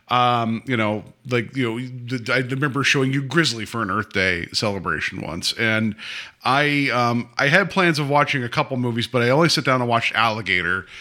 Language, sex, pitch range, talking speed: English, male, 115-165 Hz, 195 wpm